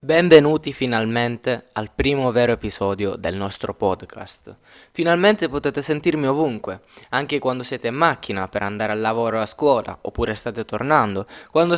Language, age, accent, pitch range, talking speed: Italian, 10-29, native, 120-170 Hz, 150 wpm